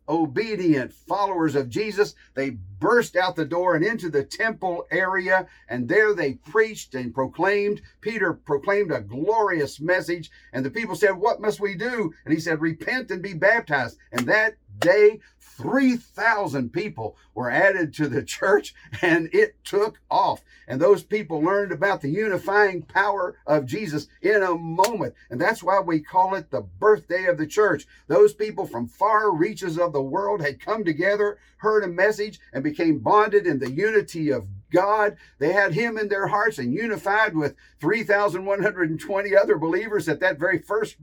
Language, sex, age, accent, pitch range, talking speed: English, male, 50-69, American, 155-210 Hz, 170 wpm